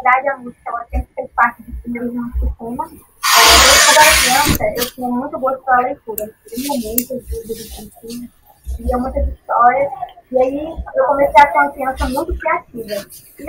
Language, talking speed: Portuguese, 120 wpm